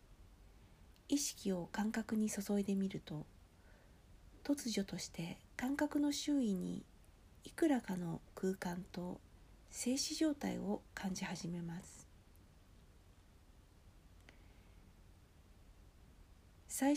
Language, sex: Japanese, female